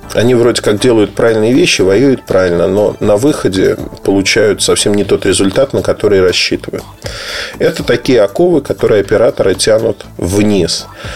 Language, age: Russian, 20-39